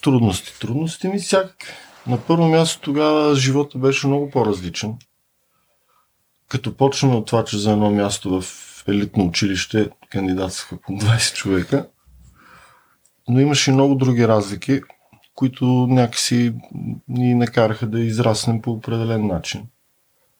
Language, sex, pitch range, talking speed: Bulgarian, male, 95-125 Hz, 120 wpm